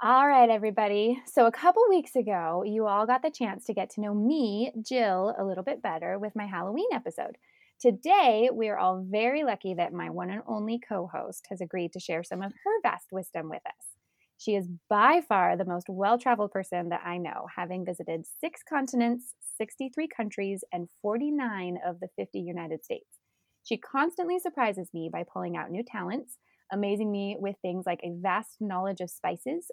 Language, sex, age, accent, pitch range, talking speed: English, female, 20-39, American, 185-250 Hz, 185 wpm